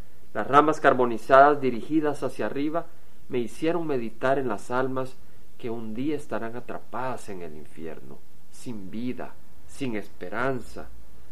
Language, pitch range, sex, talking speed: Spanish, 105-140 Hz, male, 125 wpm